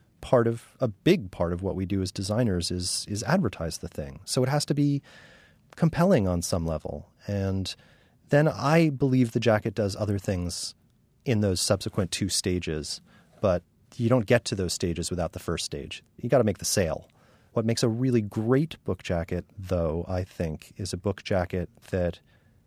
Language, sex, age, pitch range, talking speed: English, male, 30-49, 90-110 Hz, 190 wpm